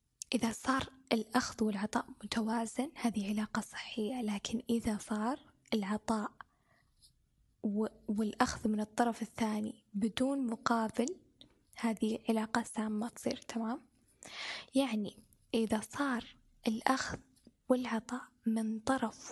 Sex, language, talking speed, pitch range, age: female, Arabic, 95 wpm, 220-250 Hz, 10-29